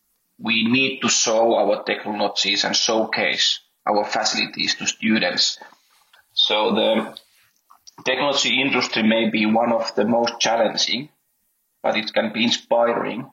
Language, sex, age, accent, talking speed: English, male, 30-49, Finnish, 125 wpm